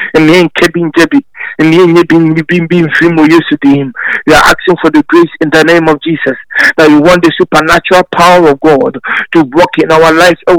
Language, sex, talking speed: English, male, 215 wpm